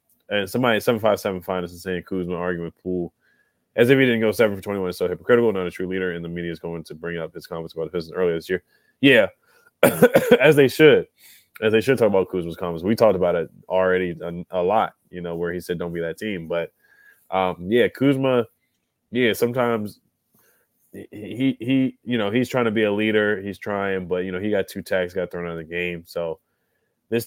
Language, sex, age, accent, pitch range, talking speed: English, male, 20-39, American, 85-105 Hz, 225 wpm